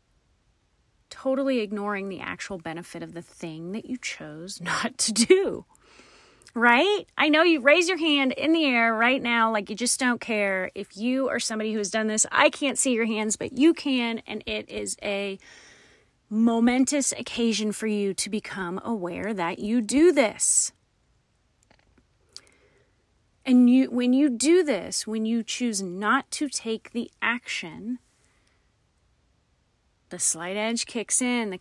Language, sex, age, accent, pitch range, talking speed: English, female, 30-49, American, 200-245 Hz, 155 wpm